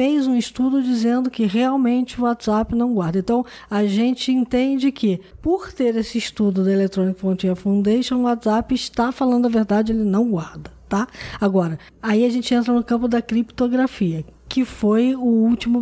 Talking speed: 175 wpm